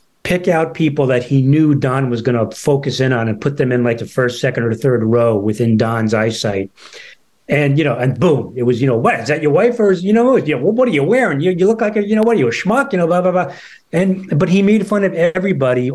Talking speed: 275 wpm